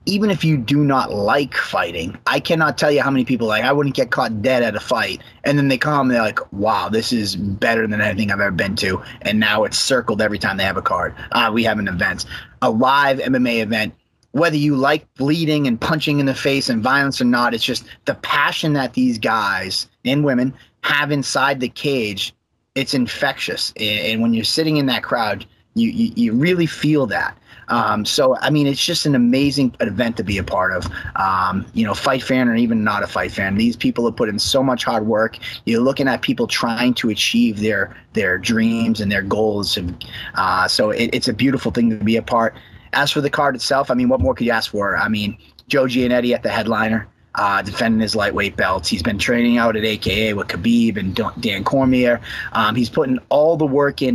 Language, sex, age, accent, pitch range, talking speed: English, male, 30-49, American, 110-145 Hz, 225 wpm